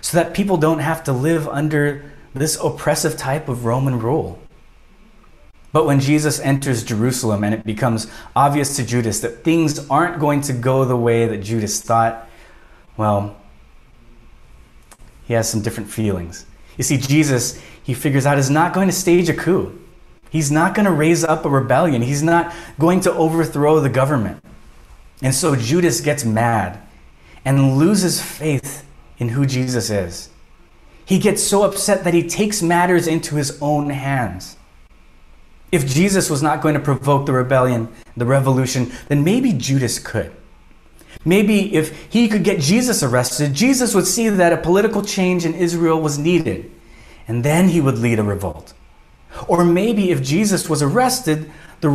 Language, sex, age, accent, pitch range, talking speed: English, male, 20-39, American, 120-175 Hz, 165 wpm